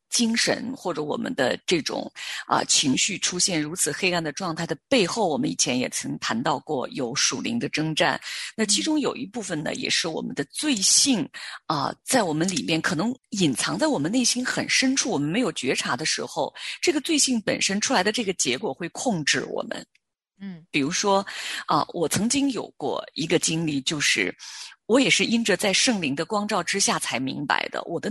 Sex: female